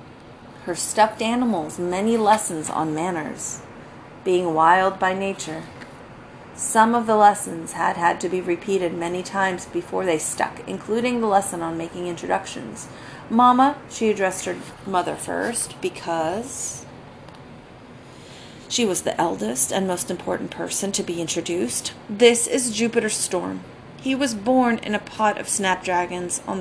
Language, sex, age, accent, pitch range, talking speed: English, female, 30-49, American, 180-235 Hz, 140 wpm